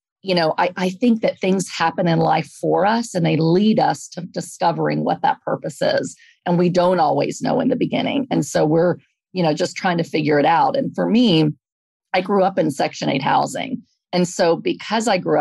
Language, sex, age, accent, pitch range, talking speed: English, female, 40-59, American, 150-190 Hz, 220 wpm